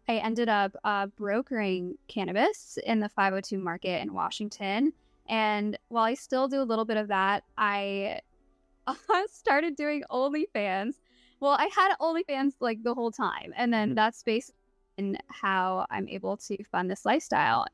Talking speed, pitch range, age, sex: 155 wpm, 200-260 Hz, 10-29, female